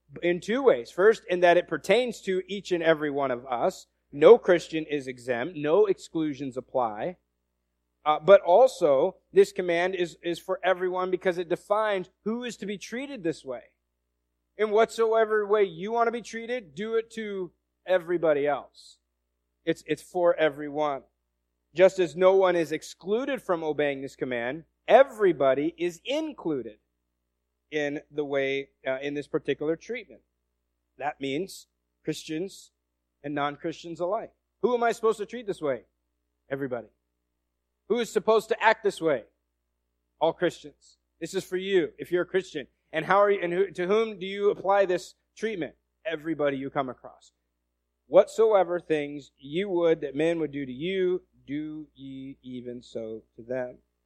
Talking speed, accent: 160 wpm, American